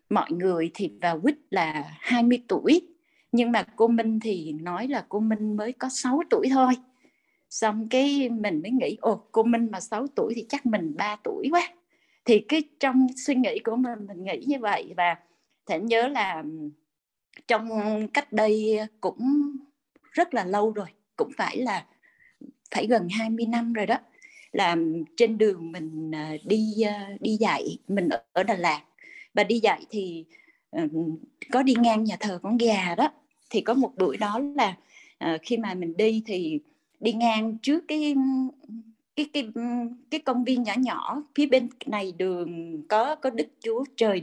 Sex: female